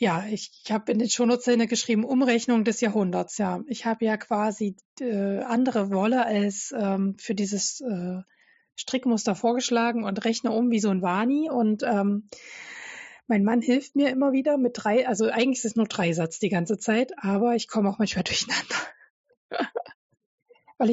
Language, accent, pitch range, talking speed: German, German, 205-255 Hz, 170 wpm